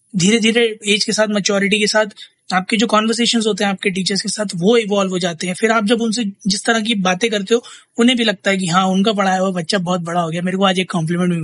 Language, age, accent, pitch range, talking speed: Hindi, 20-39, native, 185-220 Hz, 260 wpm